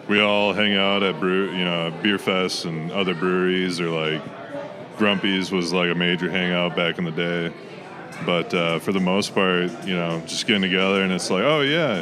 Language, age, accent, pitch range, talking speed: English, 30-49, American, 90-105 Hz, 205 wpm